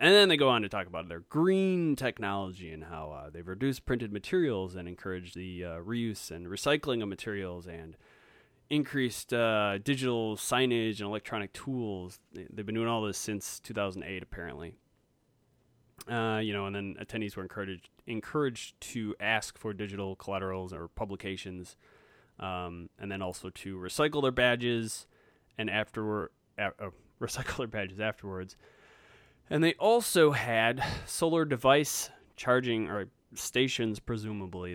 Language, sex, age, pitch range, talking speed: English, male, 20-39, 95-120 Hz, 145 wpm